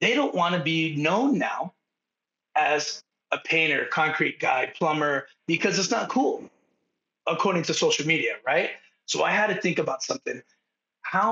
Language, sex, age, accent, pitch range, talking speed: English, male, 30-49, American, 160-220 Hz, 160 wpm